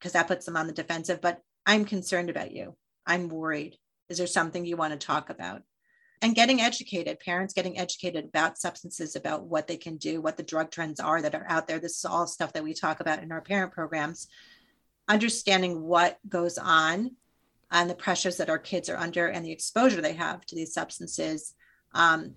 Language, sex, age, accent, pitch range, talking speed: English, female, 30-49, American, 165-200 Hz, 205 wpm